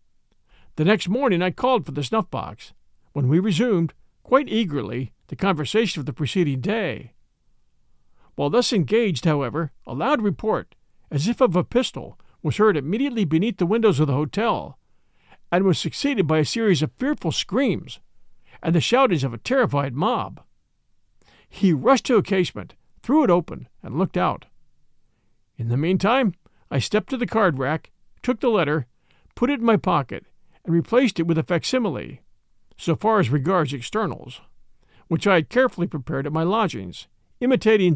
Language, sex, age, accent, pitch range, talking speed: English, male, 50-69, American, 145-220 Hz, 165 wpm